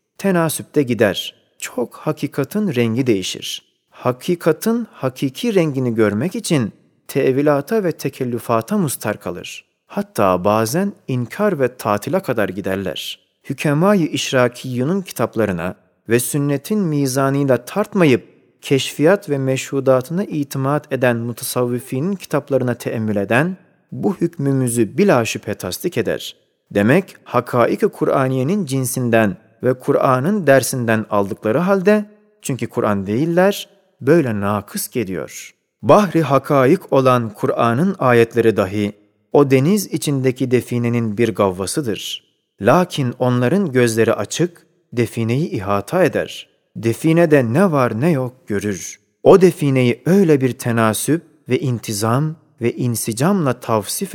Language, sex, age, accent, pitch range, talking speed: Turkish, male, 40-59, native, 115-165 Hz, 105 wpm